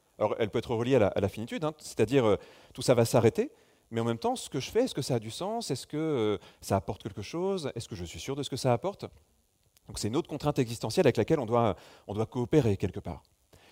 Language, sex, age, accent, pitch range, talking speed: French, male, 30-49, French, 115-150 Hz, 275 wpm